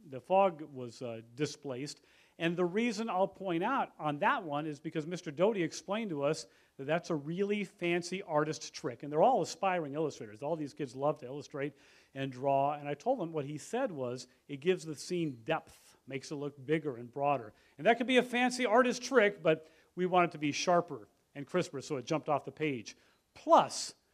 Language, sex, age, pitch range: English, male, 40-59, 140-190 Hz